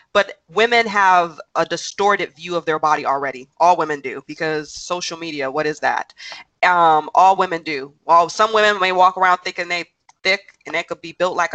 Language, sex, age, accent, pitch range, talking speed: English, female, 20-39, American, 150-190 Hz, 190 wpm